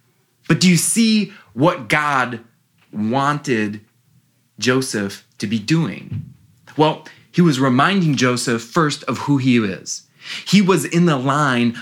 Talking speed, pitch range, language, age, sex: 130 wpm, 110-150 Hz, English, 20-39, male